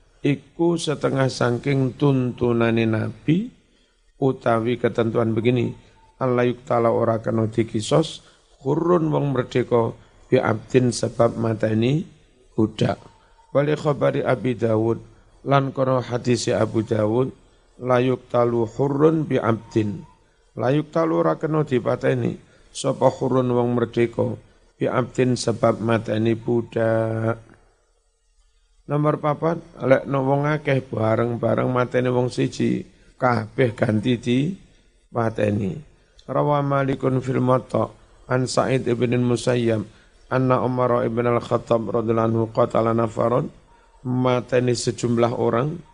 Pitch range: 115-135 Hz